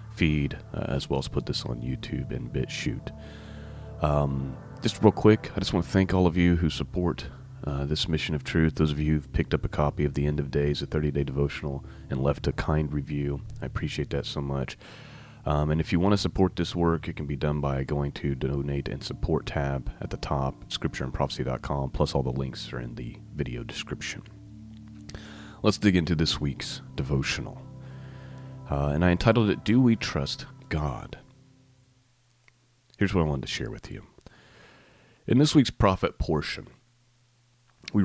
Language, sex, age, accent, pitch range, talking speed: English, male, 30-49, American, 70-110 Hz, 185 wpm